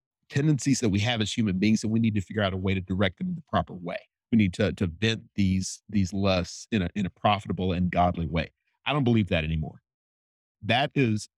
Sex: male